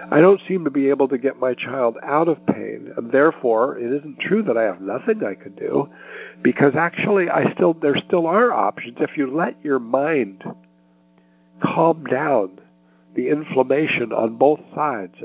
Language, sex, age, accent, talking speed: English, male, 60-79, American, 175 wpm